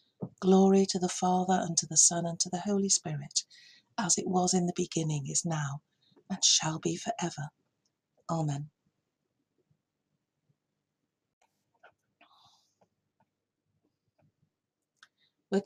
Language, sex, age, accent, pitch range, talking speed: English, female, 50-69, British, 160-195 Hz, 105 wpm